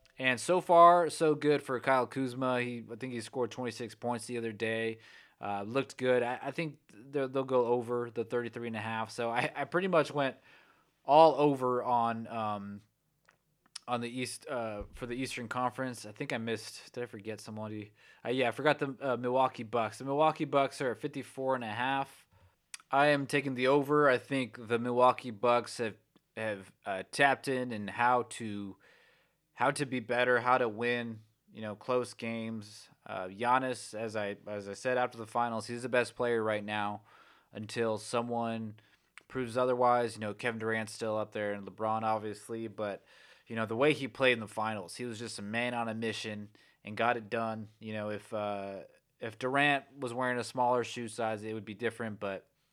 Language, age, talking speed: English, 20-39, 200 wpm